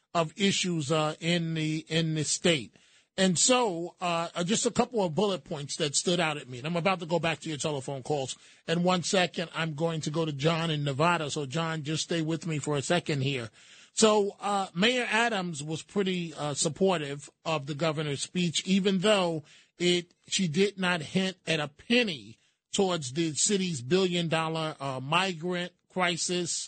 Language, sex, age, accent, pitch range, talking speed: English, male, 30-49, American, 155-185 Hz, 185 wpm